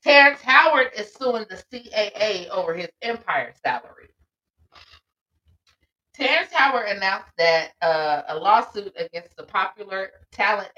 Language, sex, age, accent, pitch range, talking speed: English, female, 30-49, American, 145-235 Hz, 115 wpm